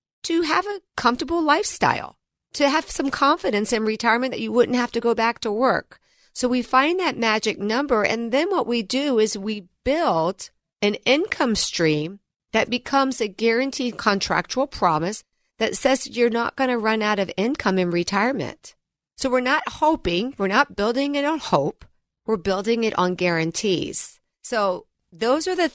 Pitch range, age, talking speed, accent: 180-255 Hz, 50-69, 170 wpm, American